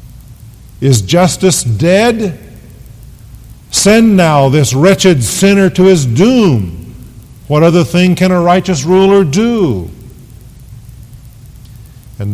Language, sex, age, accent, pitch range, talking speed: English, male, 50-69, American, 115-170 Hz, 95 wpm